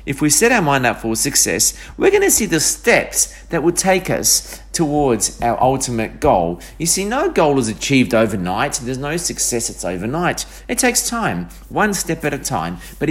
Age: 40-59